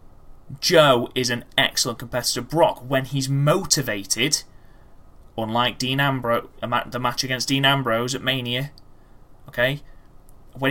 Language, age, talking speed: English, 20-39, 120 wpm